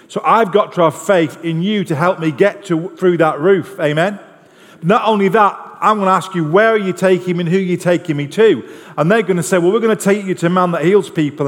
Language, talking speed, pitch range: English, 275 wpm, 180-215 Hz